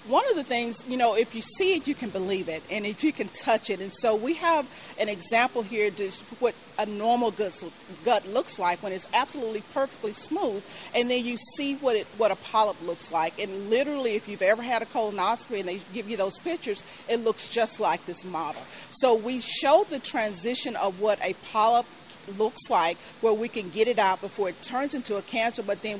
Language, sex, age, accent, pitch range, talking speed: English, female, 40-59, American, 190-240 Hz, 220 wpm